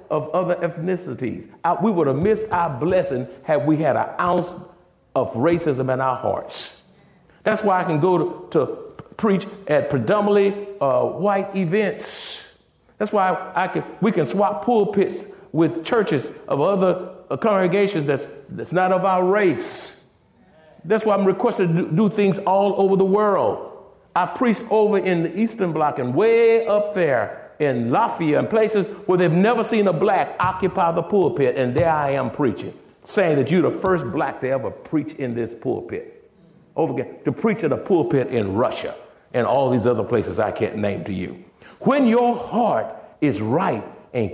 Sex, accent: male, American